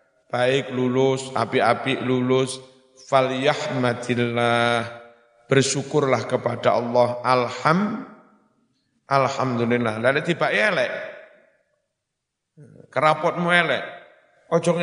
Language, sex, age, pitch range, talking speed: Indonesian, male, 50-69, 130-155 Hz, 70 wpm